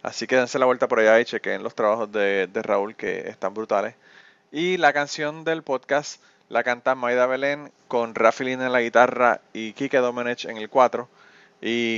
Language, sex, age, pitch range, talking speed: Spanish, male, 30-49, 115-130 Hz, 190 wpm